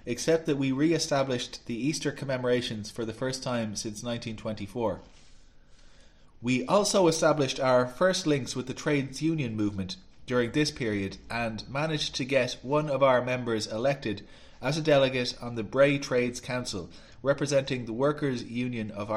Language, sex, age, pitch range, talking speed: English, male, 20-39, 110-145 Hz, 155 wpm